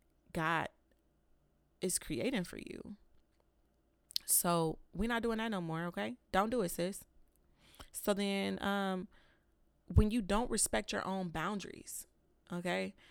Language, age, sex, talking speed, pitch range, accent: English, 20-39, female, 130 wpm, 160-210 Hz, American